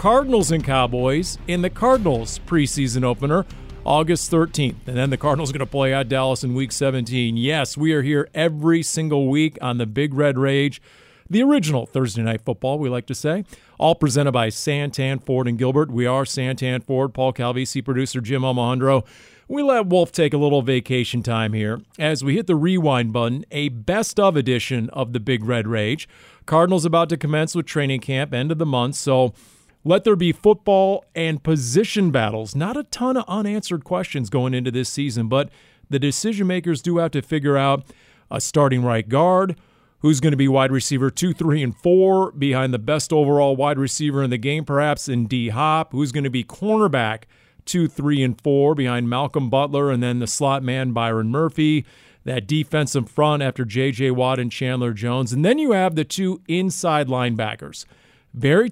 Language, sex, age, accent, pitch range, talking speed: English, male, 40-59, American, 125-160 Hz, 190 wpm